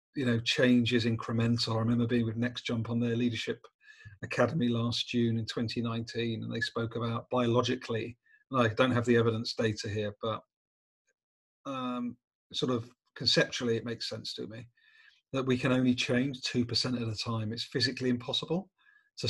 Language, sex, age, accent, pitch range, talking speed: English, male, 40-59, British, 115-135 Hz, 175 wpm